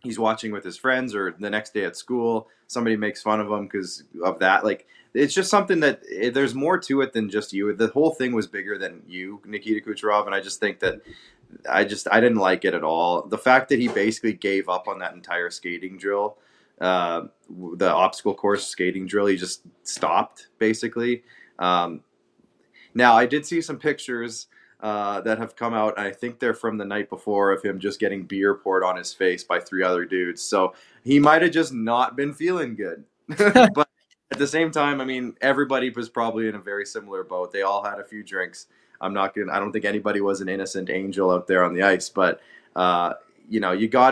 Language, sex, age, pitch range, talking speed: English, male, 20-39, 95-130 Hz, 215 wpm